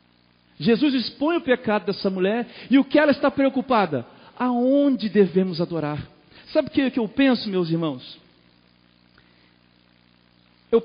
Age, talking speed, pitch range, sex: 50-69, 125 wpm, 150-245 Hz, male